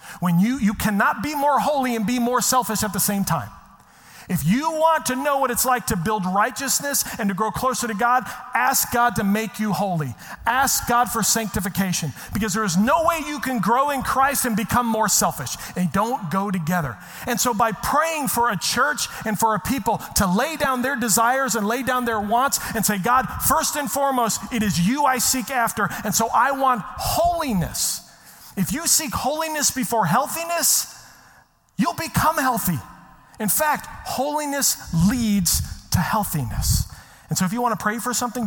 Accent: American